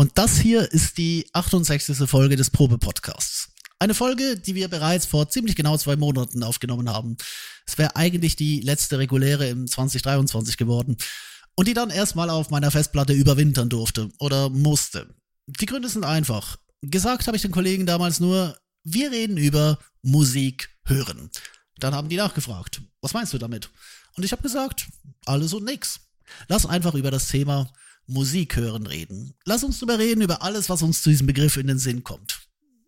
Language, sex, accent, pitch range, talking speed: German, male, German, 130-175 Hz, 175 wpm